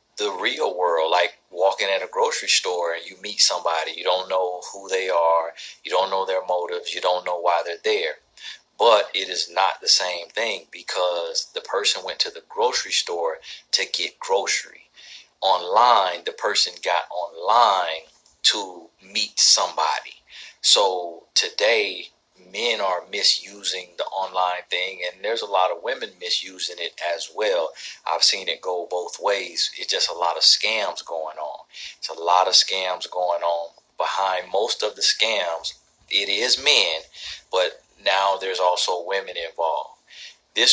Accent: American